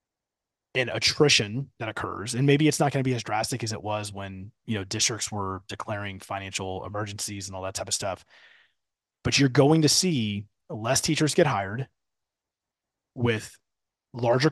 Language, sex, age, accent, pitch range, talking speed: English, male, 30-49, American, 105-140 Hz, 170 wpm